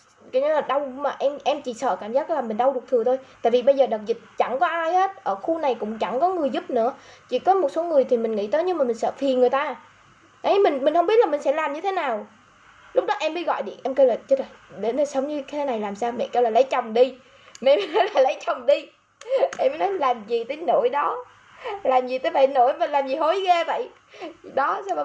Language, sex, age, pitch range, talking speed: Vietnamese, female, 10-29, 235-315 Hz, 285 wpm